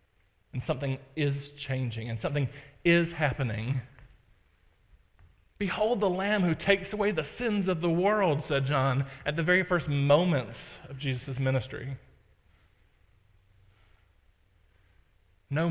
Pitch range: 115-150 Hz